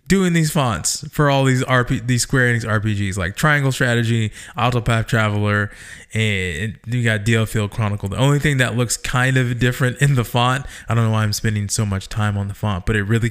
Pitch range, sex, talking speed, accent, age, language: 105-135 Hz, male, 215 wpm, American, 20-39, English